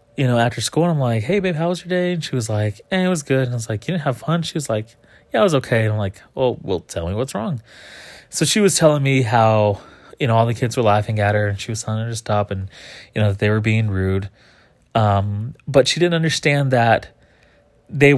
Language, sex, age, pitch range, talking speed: English, male, 20-39, 105-135 Hz, 270 wpm